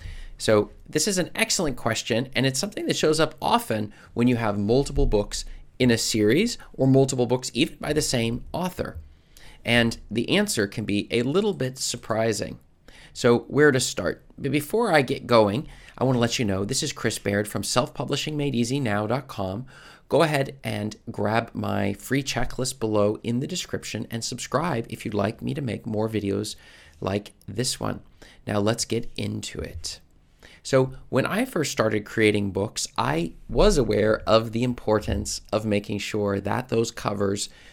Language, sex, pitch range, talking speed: English, male, 100-125 Hz, 170 wpm